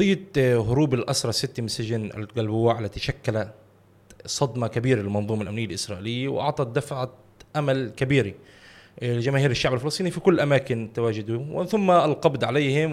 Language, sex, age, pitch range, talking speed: Arabic, male, 20-39, 115-145 Hz, 130 wpm